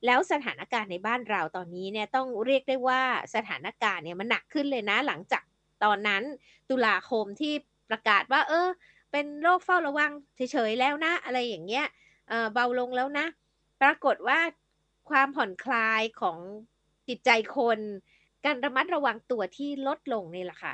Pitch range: 210-285 Hz